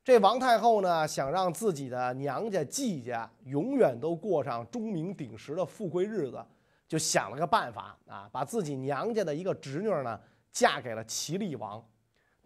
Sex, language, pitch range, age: male, Chinese, 140-210 Hz, 30-49